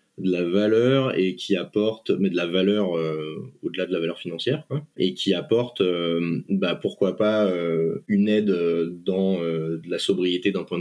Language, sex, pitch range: French, male, 90-105 Hz